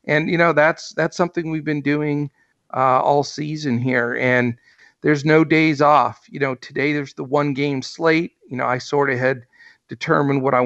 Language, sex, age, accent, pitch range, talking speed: English, male, 50-69, American, 125-150 Hz, 190 wpm